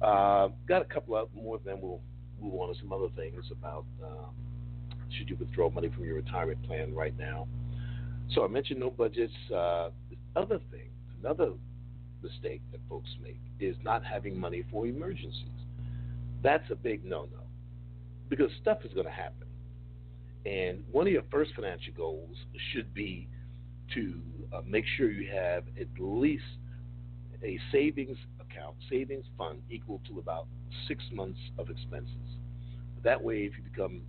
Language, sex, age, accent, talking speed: English, male, 50-69, American, 160 wpm